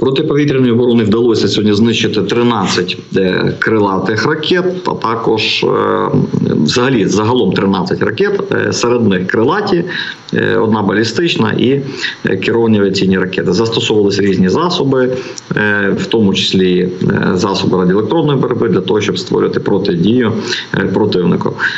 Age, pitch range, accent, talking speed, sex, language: 50-69, 95-120 Hz, native, 105 wpm, male, Ukrainian